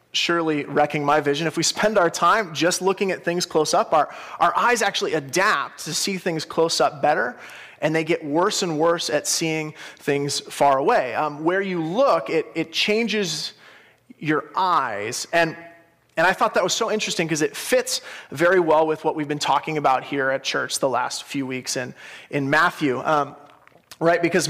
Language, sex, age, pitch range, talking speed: English, male, 30-49, 150-190 Hz, 190 wpm